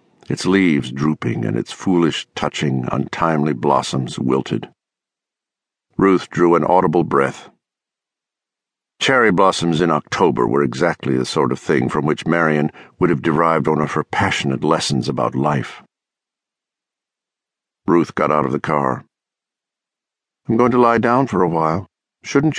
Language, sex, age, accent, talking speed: English, male, 60-79, American, 140 wpm